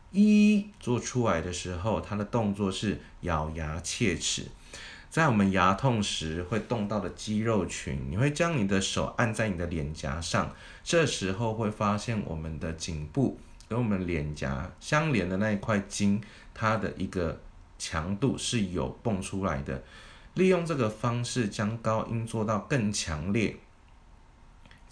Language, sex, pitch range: Chinese, male, 90-115 Hz